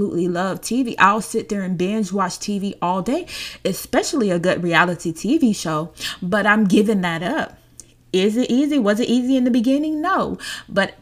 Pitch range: 185-230 Hz